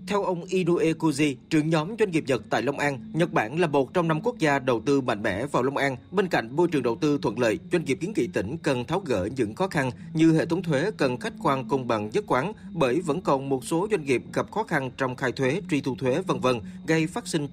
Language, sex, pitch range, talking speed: Vietnamese, male, 135-175 Hz, 265 wpm